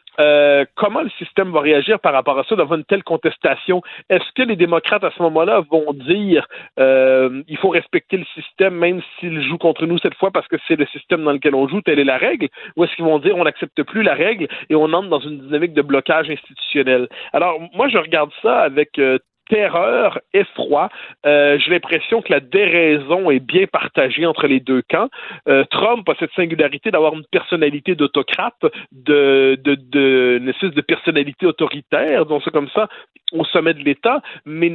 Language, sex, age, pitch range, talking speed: French, male, 50-69, 145-195 Hz, 200 wpm